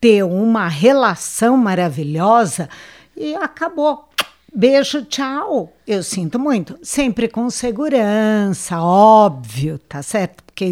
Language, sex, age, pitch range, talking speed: Portuguese, female, 60-79, 180-250 Hz, 100 wpm